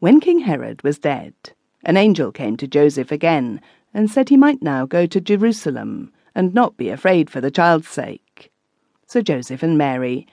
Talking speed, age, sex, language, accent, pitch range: 180 wpm, 50-69, female, English, British, 140-205 Hz